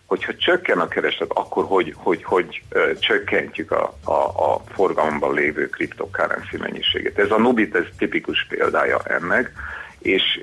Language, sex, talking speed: Hungarian, male, 145 wpm